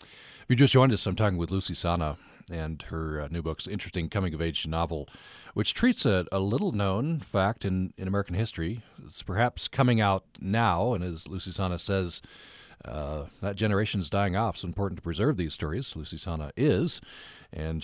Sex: male